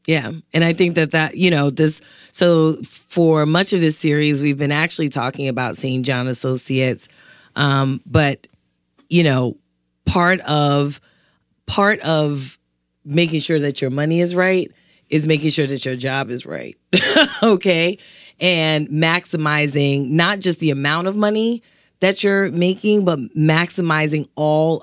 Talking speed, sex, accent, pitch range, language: 145 wpm, female, American, 135-165 Hz, English